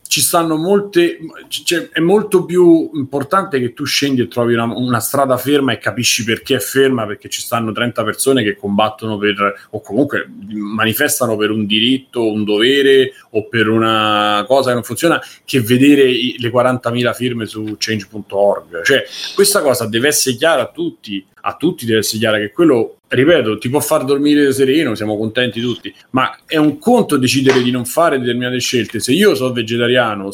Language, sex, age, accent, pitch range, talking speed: Italian, male, 30-49, native, 110-150 Hz, 180 wpm